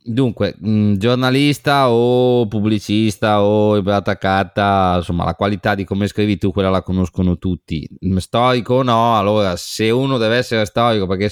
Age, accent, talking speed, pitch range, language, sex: 30-49, native, 155 wpm, 95-115 Hz, Italian, male